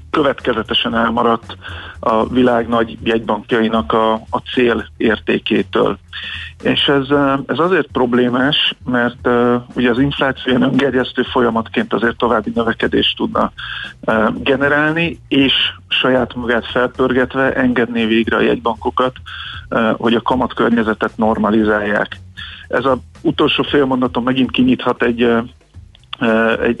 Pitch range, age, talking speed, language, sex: 110-125 Hz, 50-69, 110 wpm, Hungarian, male